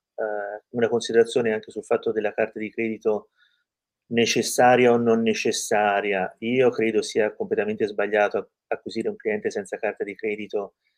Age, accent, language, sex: 30-49, native, Italian, male